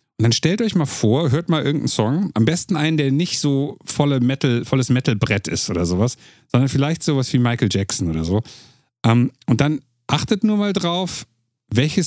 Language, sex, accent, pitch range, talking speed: German, male, German, 120-155 Hz, 195 wpm